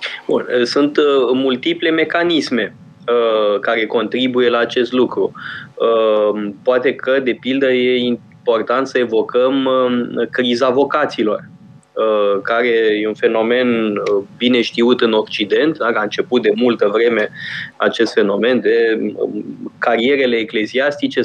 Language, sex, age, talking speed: Romanian, male, 20-39, 105 wpm